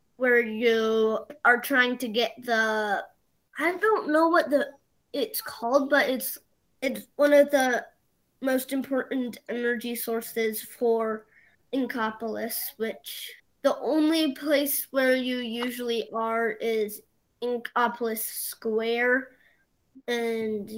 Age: 20-39